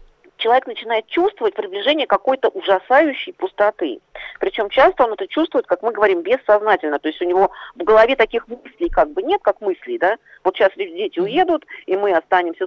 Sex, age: female, 40-59